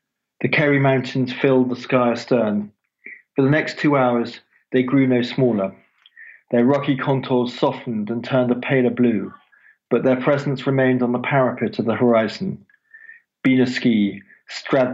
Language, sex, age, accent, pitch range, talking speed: English, male, 40-59, British, 125-150 Hz, 155 wpm